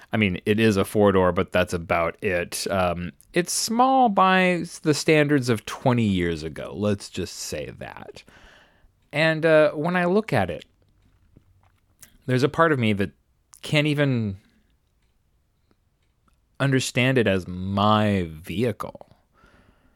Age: 30-49